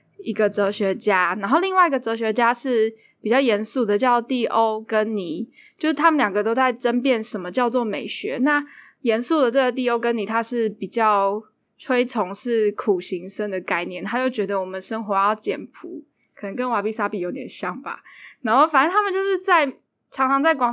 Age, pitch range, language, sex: 10-29, 205-265 Hz, Chinese, female